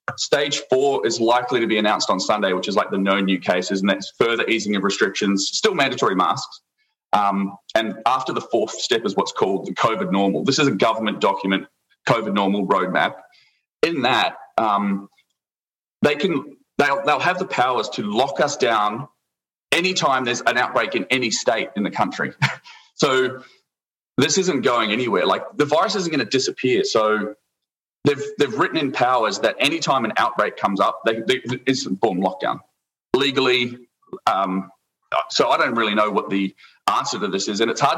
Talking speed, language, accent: 180 wpm, English, Australian